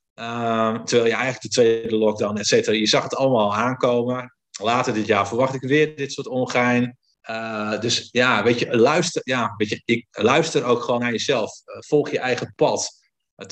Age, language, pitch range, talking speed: 50-69, Dutch, 110-135 Hz, 200 wpm